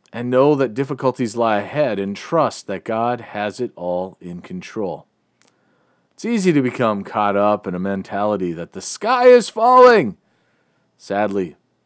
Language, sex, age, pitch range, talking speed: English, male, 40-59, 105-140 Hz, 150 wpm